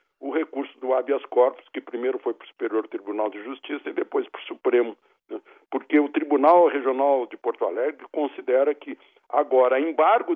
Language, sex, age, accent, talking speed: Portuguese, male, 60-79, Brazilian, 180 wpm